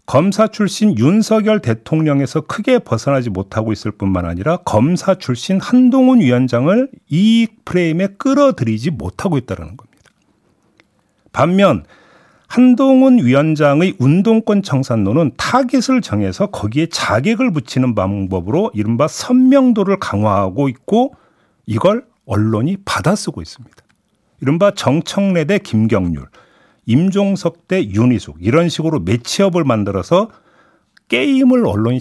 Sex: male